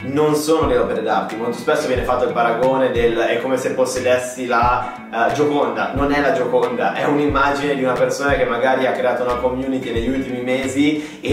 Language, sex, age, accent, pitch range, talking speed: Italian, male, 20-39, native, 120-145 Hz, 200 wpm